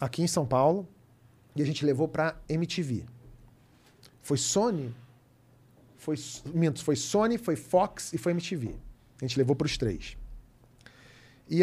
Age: 40-59